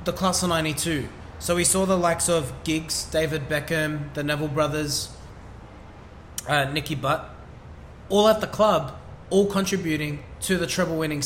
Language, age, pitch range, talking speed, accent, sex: English, 20-39, 150-190 Hz, 155 wpm, Australian, male